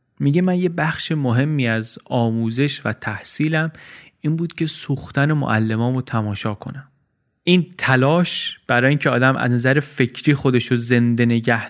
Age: 30-49